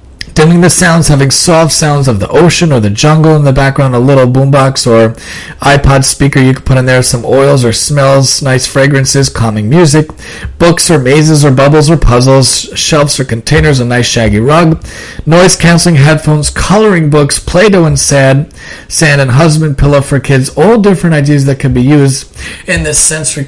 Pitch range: 130-155 Hz